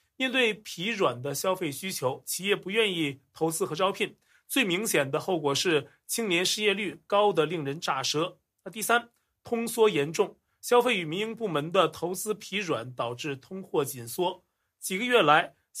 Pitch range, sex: 150-210 Hz, male